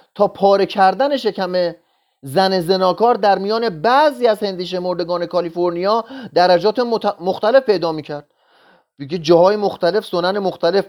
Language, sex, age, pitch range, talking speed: Persian, male, 30-49, 155-215 Hz, 120 wpm